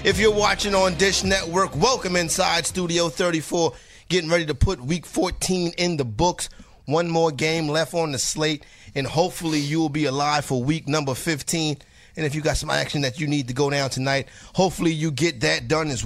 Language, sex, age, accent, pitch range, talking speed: English, male, 30-49, American, 140-160 Hz, 205 wpm